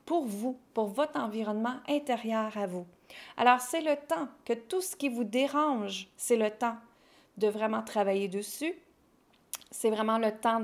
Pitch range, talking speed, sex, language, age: 205-255 Hz, 165 wpm, female, French, 40-59